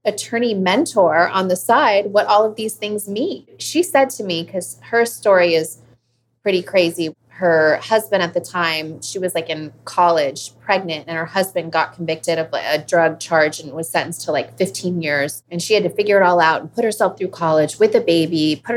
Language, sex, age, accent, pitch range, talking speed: English, female, 30-49, American, 160-200 Hz, 210 wpm